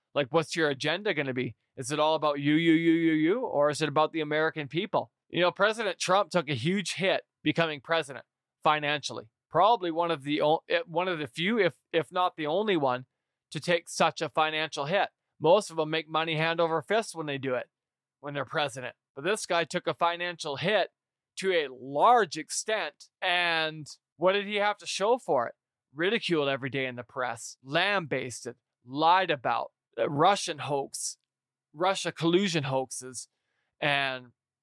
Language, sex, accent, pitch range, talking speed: English, male, American, 145-175 Hz, 180 wpm